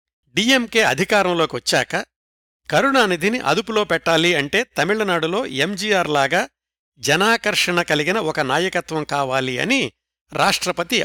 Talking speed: 85 wpm